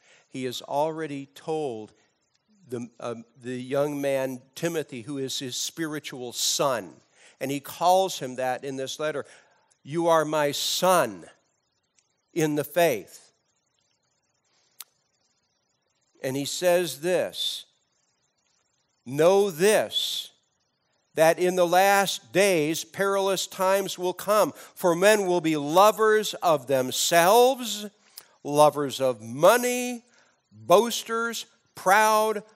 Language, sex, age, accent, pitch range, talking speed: English, male, 50-69, American, 150-210 Hz, 105 wpm